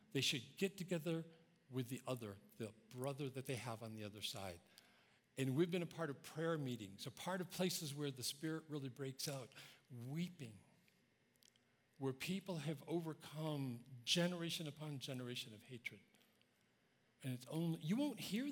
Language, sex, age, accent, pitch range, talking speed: English, male, 50-69, American, 120-160 Hz, 160 wpm